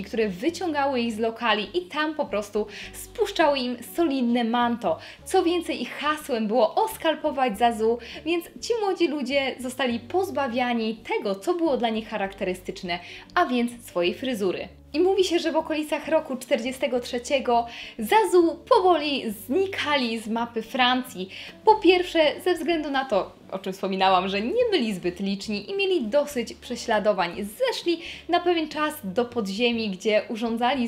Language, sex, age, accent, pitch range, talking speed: Polish, female, 10-29, native, 215-320 Hz, 150 wpm